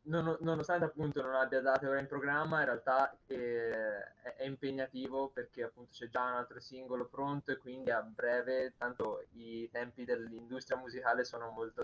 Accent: native